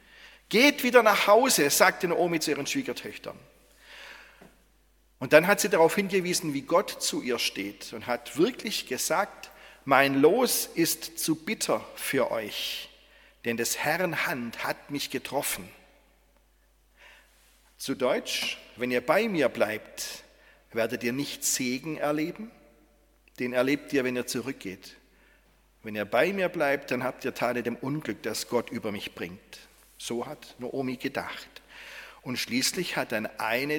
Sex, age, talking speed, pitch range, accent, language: male, 40-59, 145 wpm, 125-180 Hz, German, German